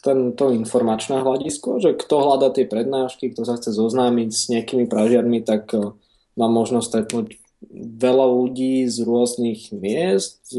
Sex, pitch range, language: male, 115-125 Hz, Slovak